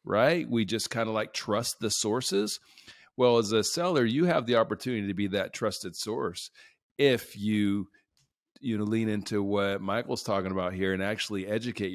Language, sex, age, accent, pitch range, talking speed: English, male, 40-59, American, 95-120 Hz, 180 wpm